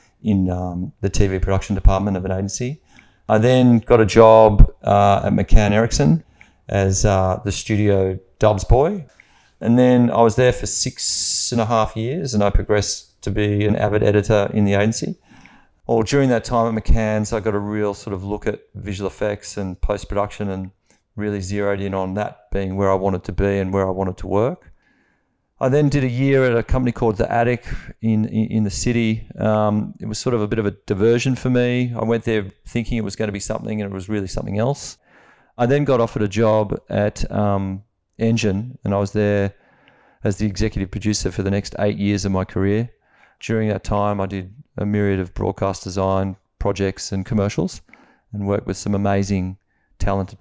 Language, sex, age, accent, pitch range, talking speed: English, male, 40-59, Australian, 100-115 Hz, 205 wpm